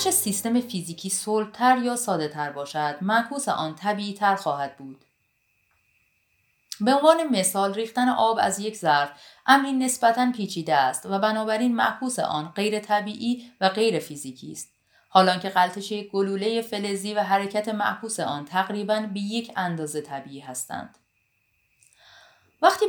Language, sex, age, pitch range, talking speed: Persian, female, 30-49, 160-235 Hz, 135 wpm